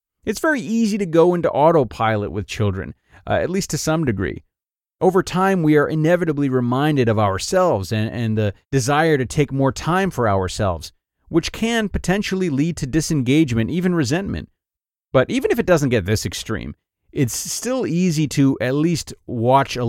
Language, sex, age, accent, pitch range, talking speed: English, male, 30-49, American, 105-155 Hz, 170 wpm